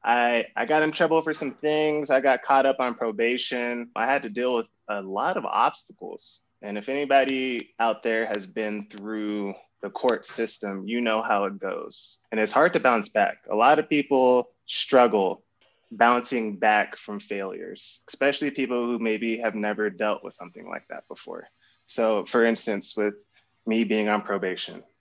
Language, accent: English, American